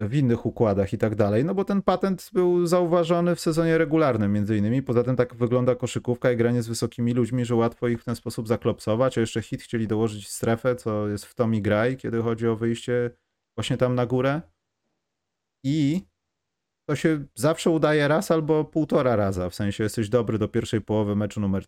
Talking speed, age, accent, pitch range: 195 wpm, 30-49, native, 100-130 Hz